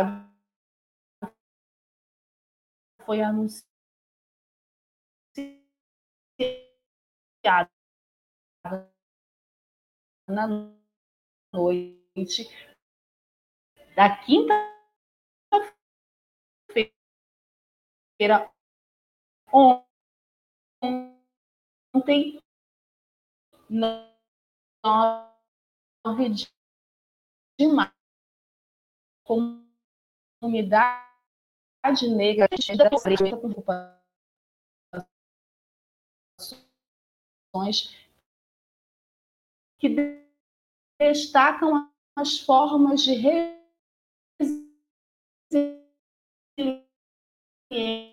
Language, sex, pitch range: Portuguese, female, 210-285 Hz